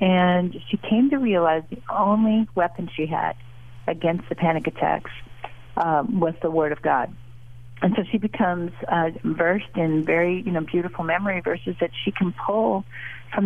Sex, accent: female, American